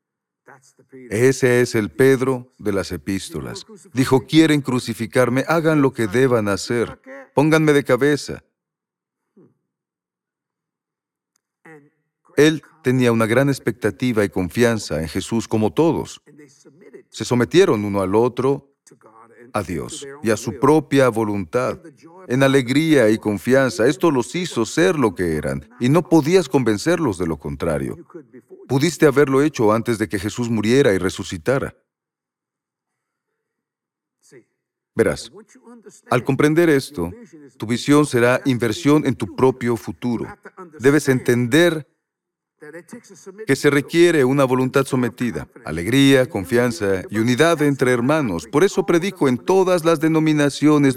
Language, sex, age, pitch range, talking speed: Spanish, male, 40-59, 115-150 Hz, 120 wpm